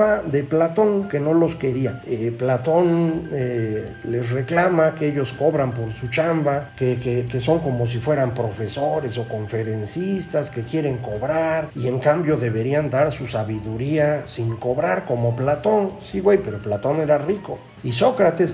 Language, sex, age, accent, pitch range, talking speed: Spanish, male, 50-69, Mexican, 120-165 Hz, 160 wpm